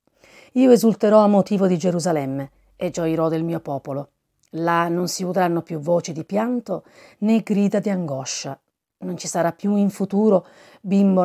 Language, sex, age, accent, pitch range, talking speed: Italian, female, 40-59, native, 160-195 Hz, 160 wpm